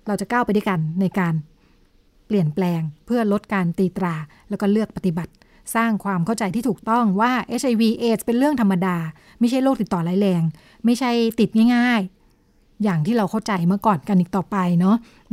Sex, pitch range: female, 190-230 Hz